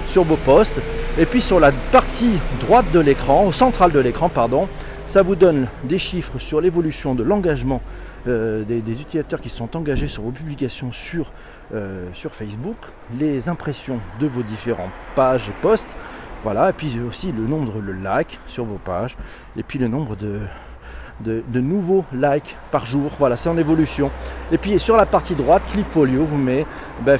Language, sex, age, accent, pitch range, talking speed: French, male, 40-59, French, 125-180 Hz, 185 wpm